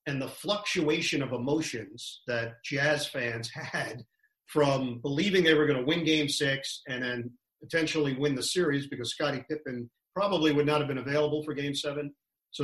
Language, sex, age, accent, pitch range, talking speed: English, male, 40-59, American, 130-150 Hz, 175 wpm